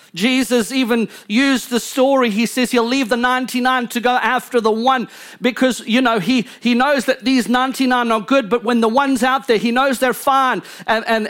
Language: English